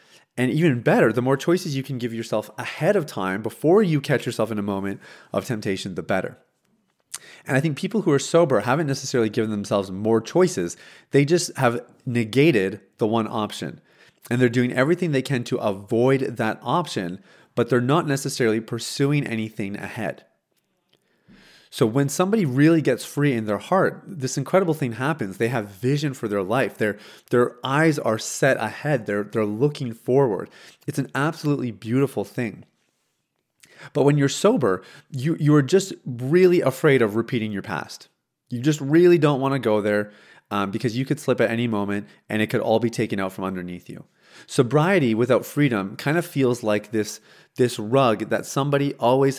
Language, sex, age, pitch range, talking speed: English, male, 30-49, 110-145 Hz, 175 wpm